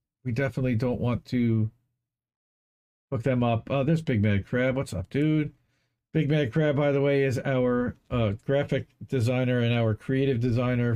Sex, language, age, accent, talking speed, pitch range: male, English, 50-69, American, 170 wpm, 110-145 Hz